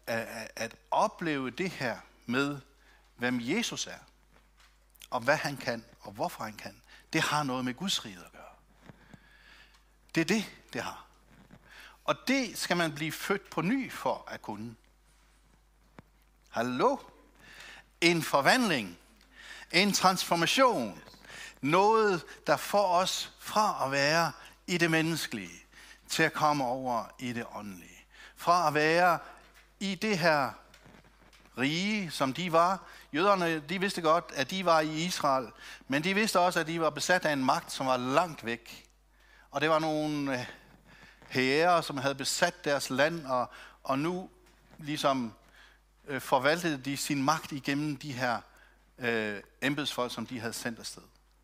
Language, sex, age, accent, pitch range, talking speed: Danish, male, 60-79, native, 130-175 Hz, 145 wpm